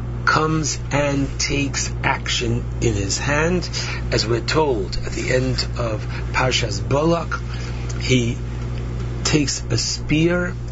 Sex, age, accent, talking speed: male, 60-79, American, 110 wpm